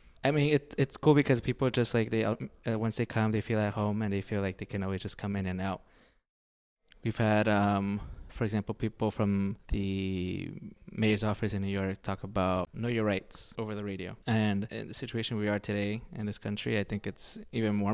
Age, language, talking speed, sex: 20-39, English, 220 wpm, male